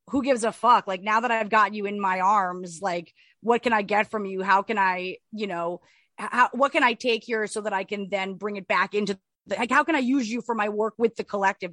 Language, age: English, 30-49